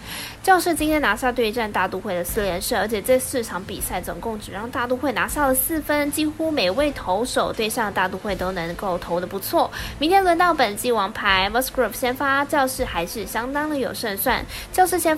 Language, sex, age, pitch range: Chinese, female, 20-39, 210-300 Hz